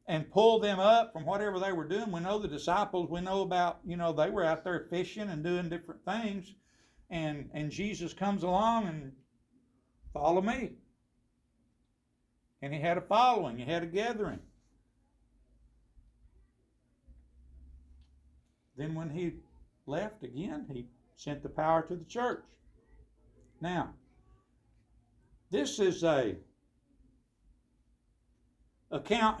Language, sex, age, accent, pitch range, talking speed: English, male, 60-79, American, 120-175 Hz, 125 wpm